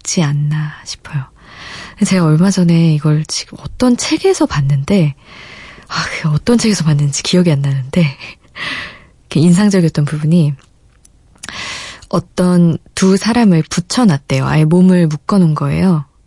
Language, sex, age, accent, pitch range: Korean, female, 20-39, native, 155-205 Hz